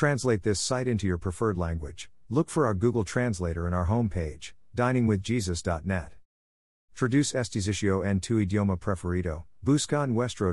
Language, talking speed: English, 140 wpm